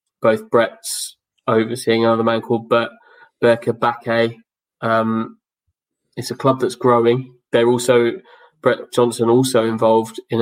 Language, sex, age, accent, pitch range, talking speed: English, male, 20-39, British, 115-125 Hz, 120 wpm